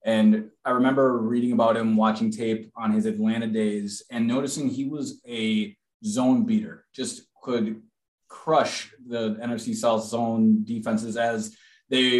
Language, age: English, 20-39